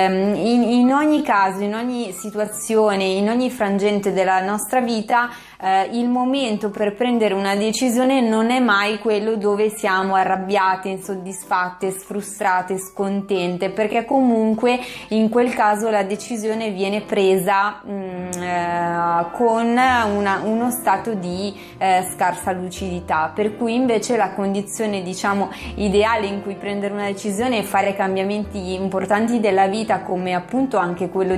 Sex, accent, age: female, native, 20-39